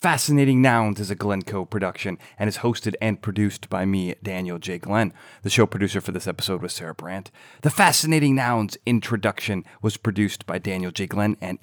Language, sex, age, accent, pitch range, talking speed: English, male, 30-49, American, 95-120 Hz, 185 wpm